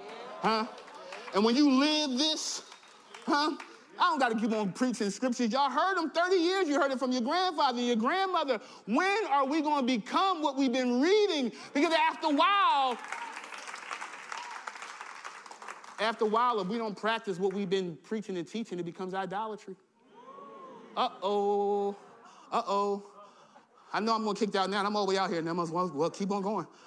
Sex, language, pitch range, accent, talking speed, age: male, English, 200-320 Hz, American, 175 wpm, 30-49